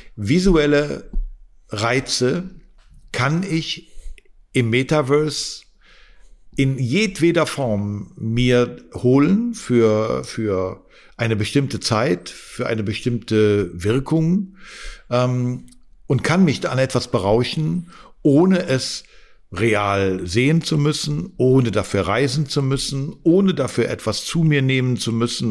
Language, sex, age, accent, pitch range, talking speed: German, male, 50-69, German, 115-145 Hz, 110 wpm